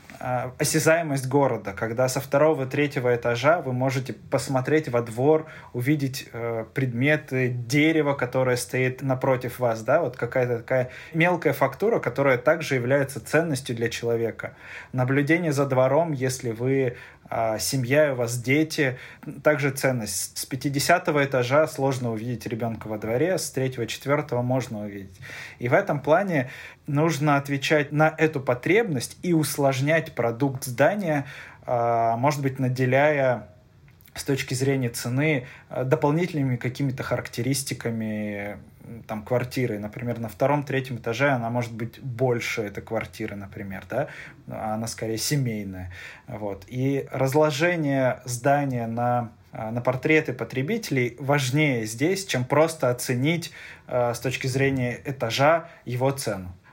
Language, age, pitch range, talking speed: Russian, 20-39, 120-145 Hz, 120 wpm